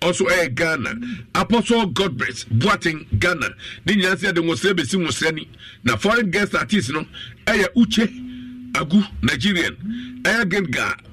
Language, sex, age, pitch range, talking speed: English, male, 50-69, 155-215 Hz, 140 wpm